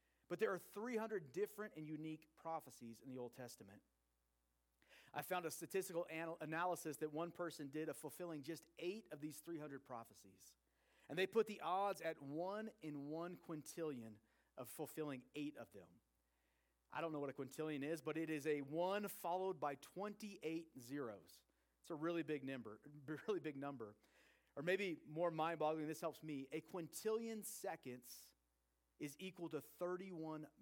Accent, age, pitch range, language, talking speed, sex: American, 40-59, 125-175 Hz, English, 155 wpm, male